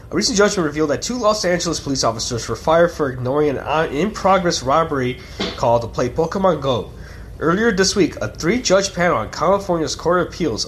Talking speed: 185 wpm